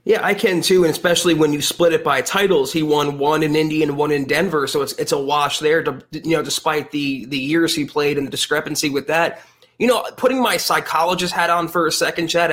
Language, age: English, 20-39